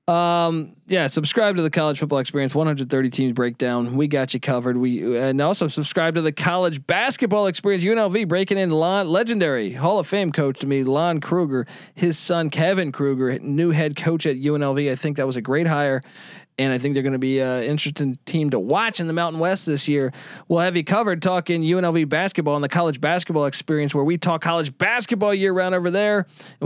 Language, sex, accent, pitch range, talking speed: English, male, American, 140-175 Hz, 210 wpm